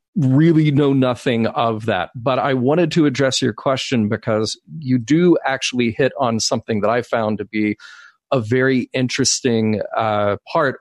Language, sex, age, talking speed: English, male, 40-59, 160 wpm